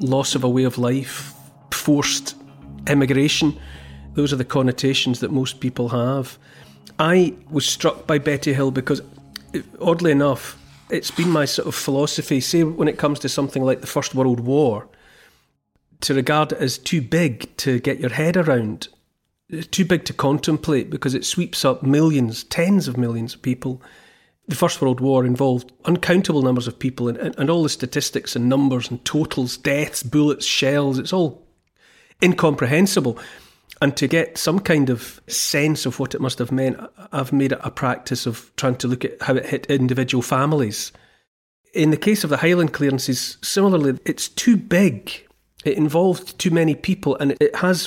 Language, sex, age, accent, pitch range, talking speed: English, male, 40-59, British, 130-155 Hz, 175 wpm